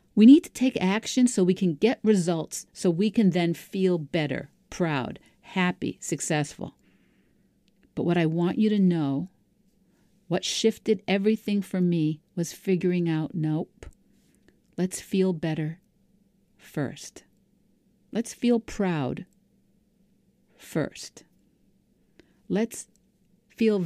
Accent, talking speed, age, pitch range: American, 115 wpm, 50-69, 160-205 Hz